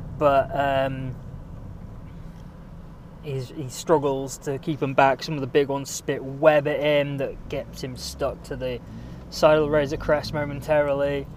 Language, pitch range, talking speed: English, 130-160 Hz, 155 wpm